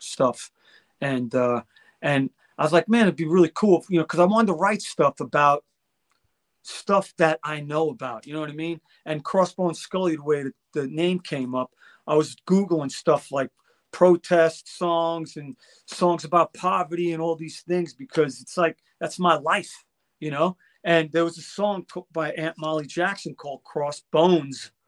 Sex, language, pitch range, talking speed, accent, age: male, English, 155-195 Hz, 180 wpm, American, 40-59